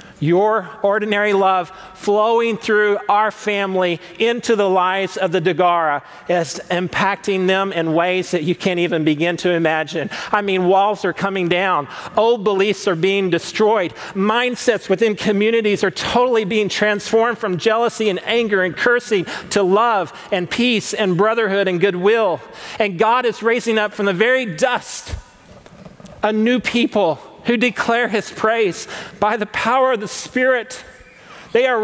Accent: American